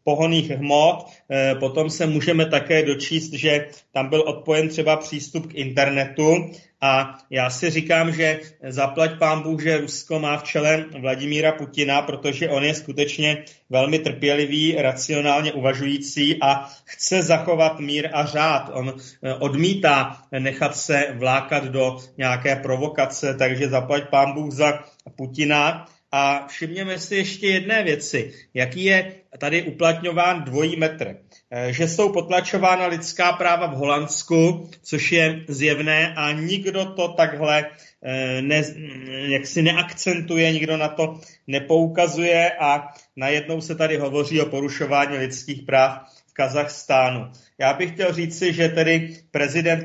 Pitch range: 140-165 Hz